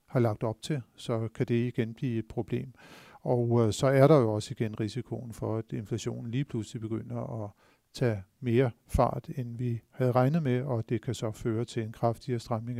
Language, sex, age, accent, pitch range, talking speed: Danish, male, 50-69, native, 110-130 Hz, 205 wpm